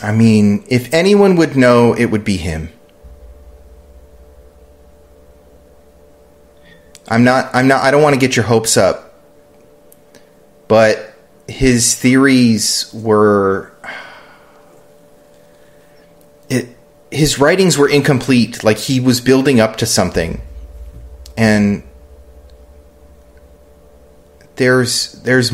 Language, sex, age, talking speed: English, male, 30-49, 95 wpm